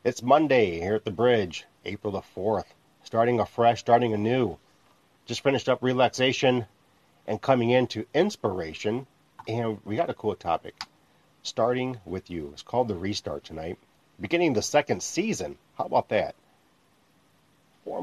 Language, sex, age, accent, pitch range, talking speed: English, male, 40-59, American, 95-125 Hz, 145 wpm